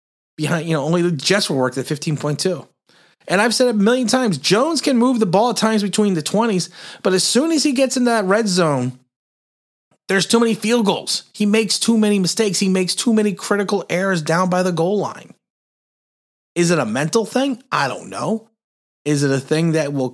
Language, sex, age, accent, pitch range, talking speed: English, male, 30-49, American, 165-220 Hz, 215 wpm